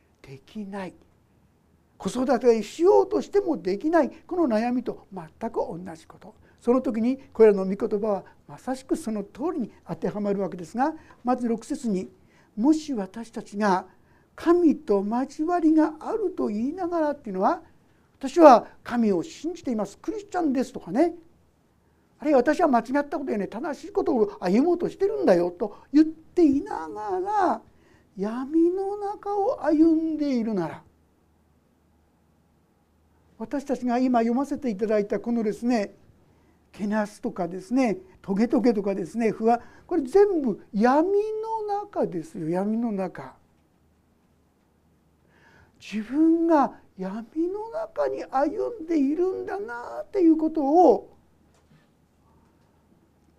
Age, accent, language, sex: 60-79, native, Japanese, male